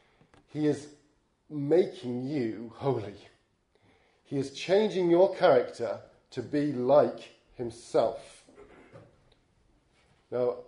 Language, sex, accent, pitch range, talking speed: English, male, British, 120-150 Hz, 85 wpm